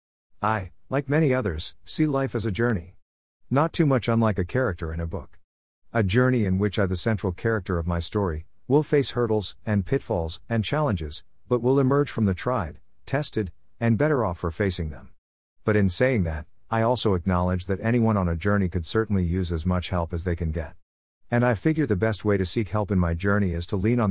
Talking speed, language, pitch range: 215 wpm, English, 85-115 Hz